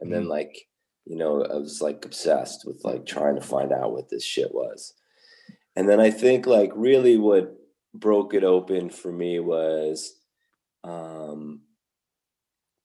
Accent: American